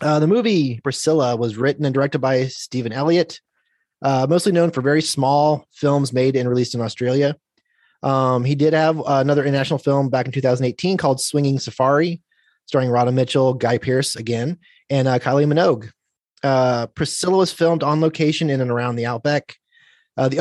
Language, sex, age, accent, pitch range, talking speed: English, male, 30-49, American, 130-160 Hz, 175 wpm